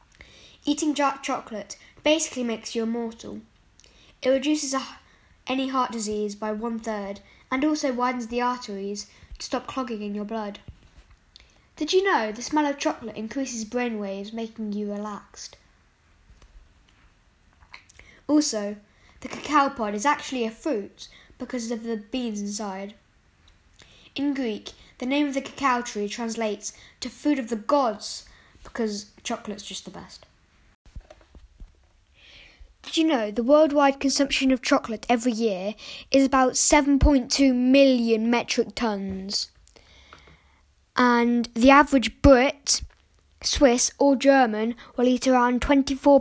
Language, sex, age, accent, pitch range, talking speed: English, female, 10-29, British, 205-270 Hz, 130 wpm